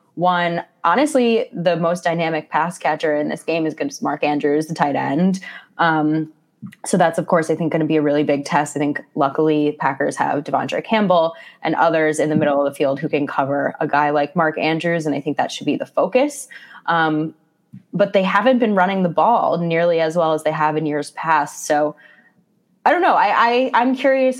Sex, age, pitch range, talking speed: female, 20-39, 150-180 Hz, 220 wpm